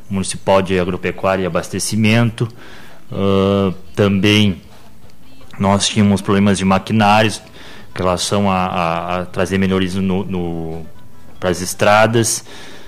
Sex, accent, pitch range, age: male, Brazilian, 95-110 Hz, 30-49